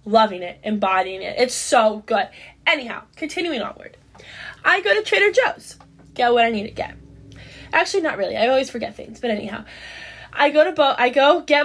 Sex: female